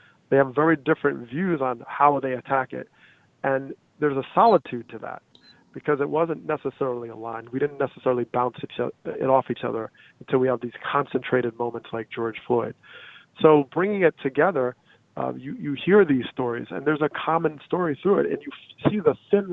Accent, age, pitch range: American, 40-59, 130-160 Hz